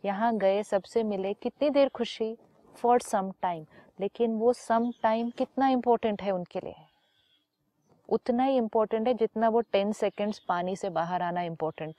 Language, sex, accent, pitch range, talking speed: Hindi, female, native, 175-220 Hz, 155 wpm